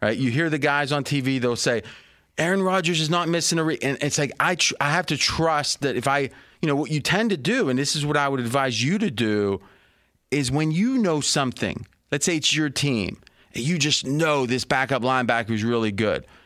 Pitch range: 130-155 Hz